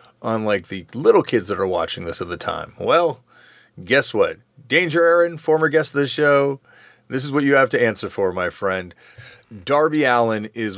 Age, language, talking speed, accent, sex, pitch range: 30-49, English, 190 wpm, American, male, 100-140 Hz